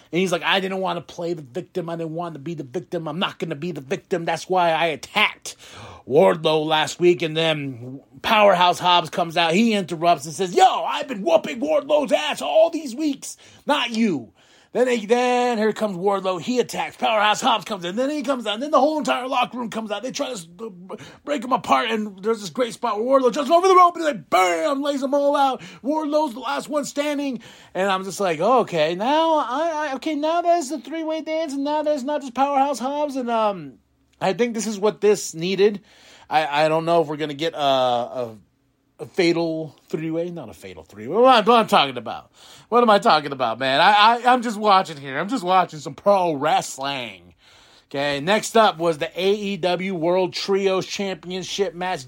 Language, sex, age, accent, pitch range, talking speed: English, male, 30-49, American, 165-250 Hz, 215 wpm